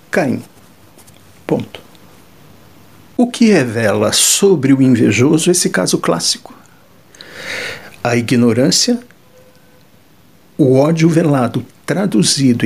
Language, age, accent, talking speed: Portuguese, 60-79, Brazilian, 80 wpm